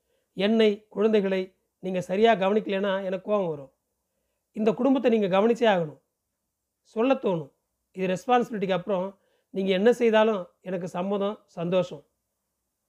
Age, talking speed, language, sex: 40-59, 110 wpm, Tamil, male